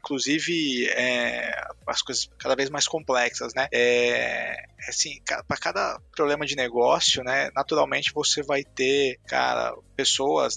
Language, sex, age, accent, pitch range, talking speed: Portuguese, male, 20-39, Brazilian, 125-150 Hz, 130 wpm